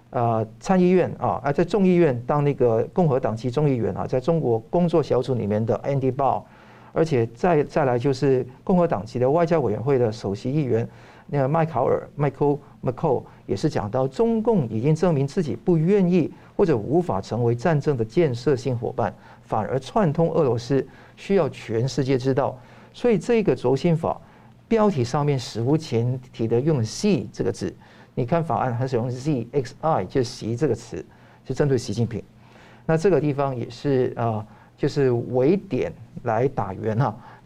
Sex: male